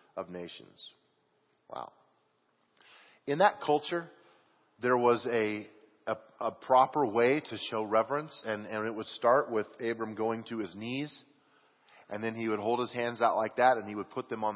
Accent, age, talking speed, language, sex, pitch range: American, 40-59, 175 wpm, English, male, 105-135 Hz